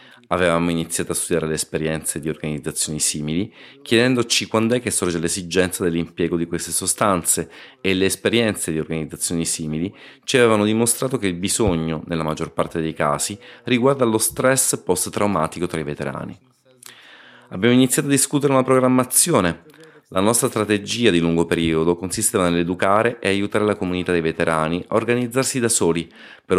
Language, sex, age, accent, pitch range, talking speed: Italian, male, 30-49, native, 85-120 Hz, 155 wpm